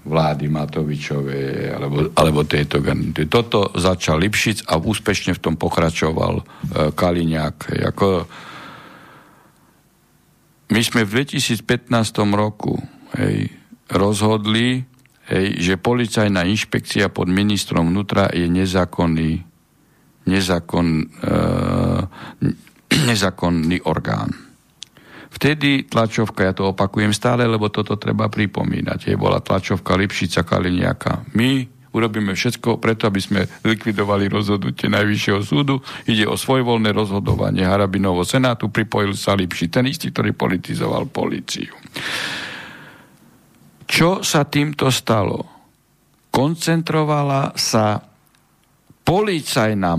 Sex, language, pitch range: male, Slovak, 90-120 Hz